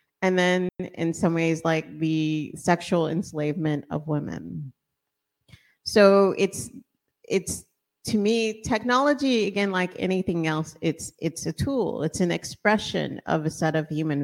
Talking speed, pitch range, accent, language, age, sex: 140 wpm, 170-215 Hz, American, English, 30-49, female